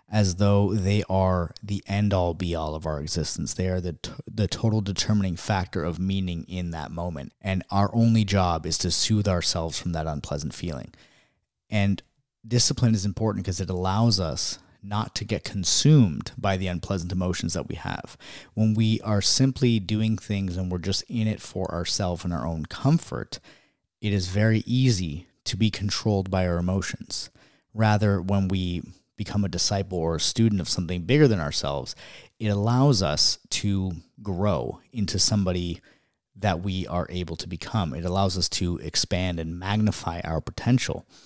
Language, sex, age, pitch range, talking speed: English, male, 30-49, 90-110 Hz, 170 wpm